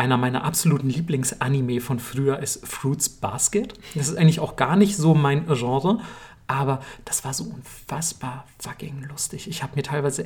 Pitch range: 130-160 Hz